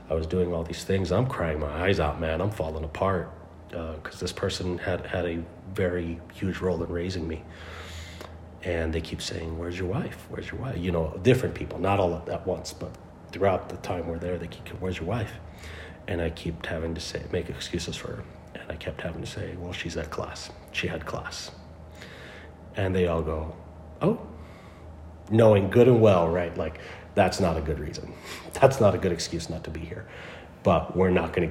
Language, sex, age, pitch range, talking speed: English, male, 40-59, 80-90 Hz, 210 wpm